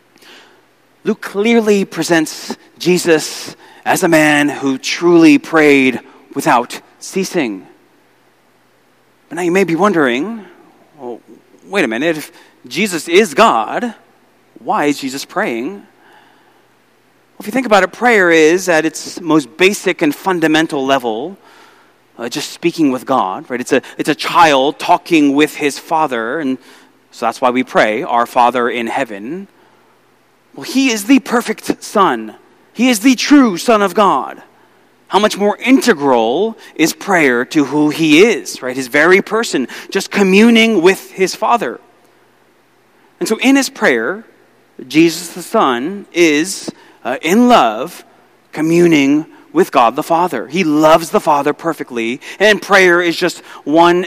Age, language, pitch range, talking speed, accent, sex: 30-49, English, 155-245 Hz, 145 wpm, American, male